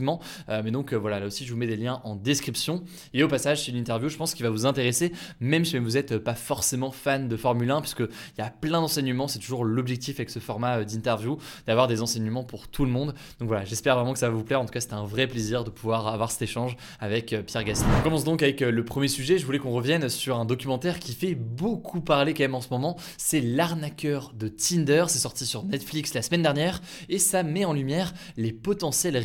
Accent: French